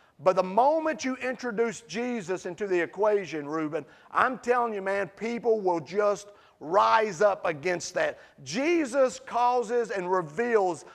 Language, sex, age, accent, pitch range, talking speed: English, male, 40-59, American, 205-275 Hz, 135 wpm